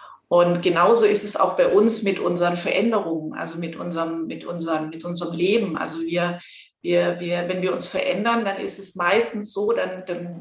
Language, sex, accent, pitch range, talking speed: German, female, German, 170-205 Hz, 190 wpm